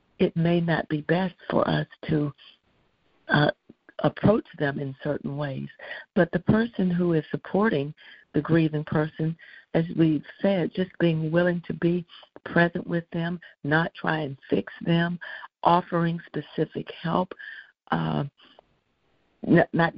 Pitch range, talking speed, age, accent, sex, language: 155-195 Hz, 130 wpm, 50-69, American, female, English